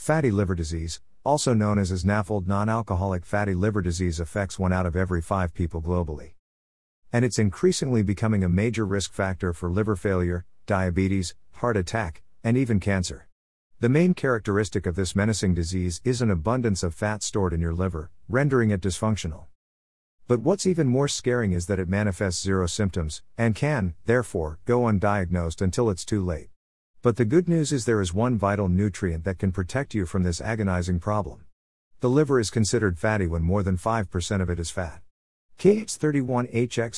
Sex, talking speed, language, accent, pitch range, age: male, 175 wpm, English, American, 90-115 Hz, 50-69